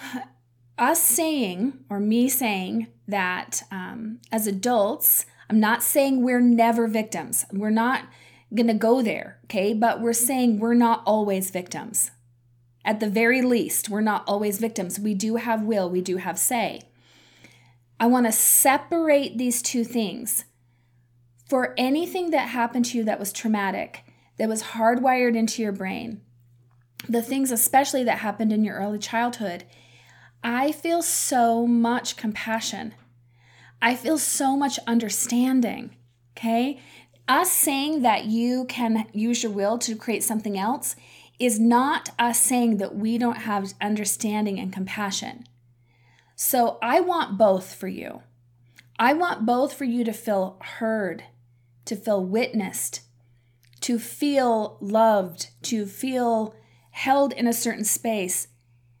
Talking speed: 140 wpm